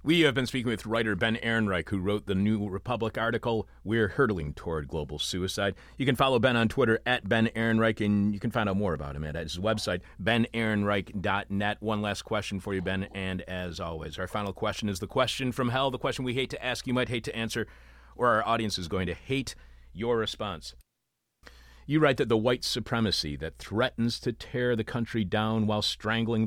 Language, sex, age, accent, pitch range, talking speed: English, male, 40-59, American, 85-115 Hz, 210 wpm